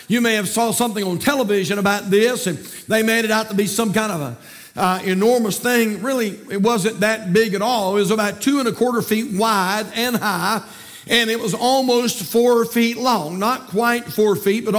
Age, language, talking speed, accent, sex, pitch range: 50-69, English, 210 wpm, American, male, 205-245 Hz